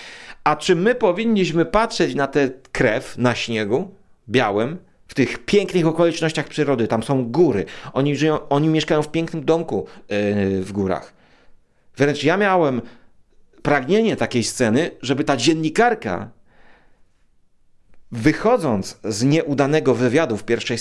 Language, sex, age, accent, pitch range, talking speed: Polish, male, 40-59, native, 105-140 Hz, 120 wpm